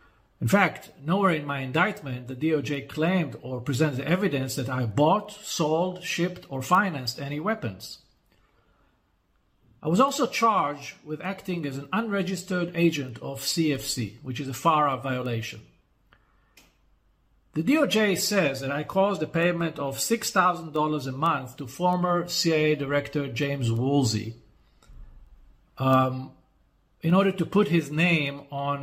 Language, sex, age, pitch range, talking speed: English, male, 50-69, 140-180 Hz, 135 wpm